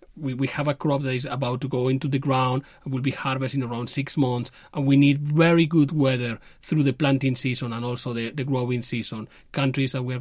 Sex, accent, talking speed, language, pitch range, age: male, Spanish, 230 wpm, English, 130-150 Hz, 30-49